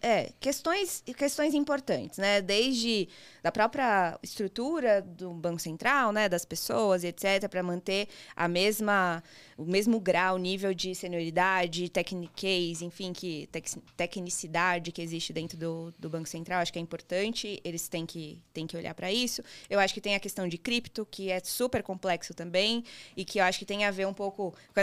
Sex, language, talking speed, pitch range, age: female, Portuguese, 175 wpm, 175-220 Hz, 20-39